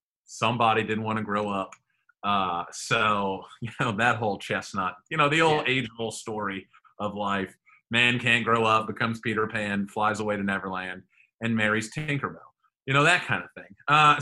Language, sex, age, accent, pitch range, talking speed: English, male, 30-49, American, 110-165 Hz, 175 wpm